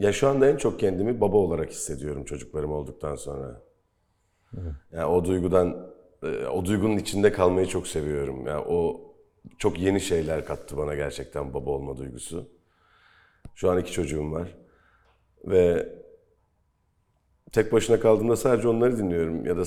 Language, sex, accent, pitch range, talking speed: English, male, Turkish, 85-105 Hz, 140 wpm